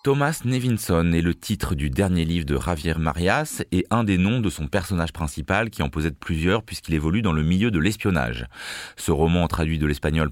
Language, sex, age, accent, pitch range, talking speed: French, male, 30-49, French, 75-100 Hz, 205 wpm